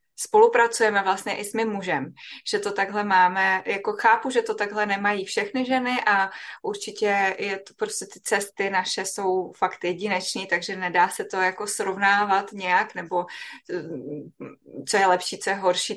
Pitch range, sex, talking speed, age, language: 185-215 Hz, female, 160 wpm, 20-39, Czech